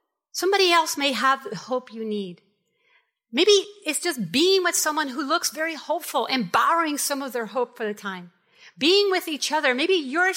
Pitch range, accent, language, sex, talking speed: 225-310 Hz, American, English, female, 190 wpm